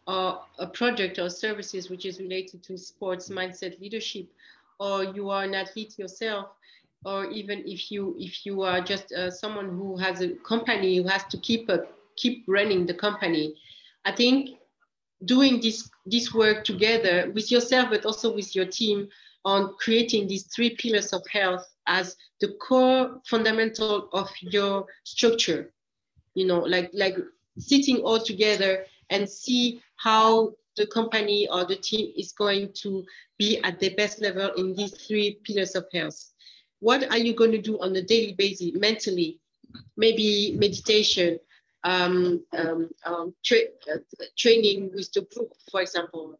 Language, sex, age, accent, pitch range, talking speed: English, female, 40-59, French, 185-225 Hz, 155 wpm